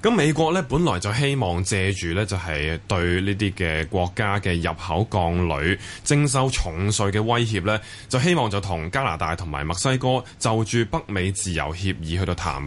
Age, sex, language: 20-39, male, Chinese